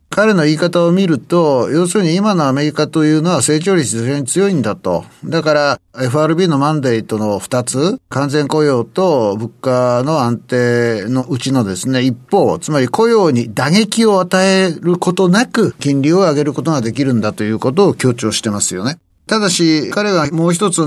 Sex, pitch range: male, 120-170 Hz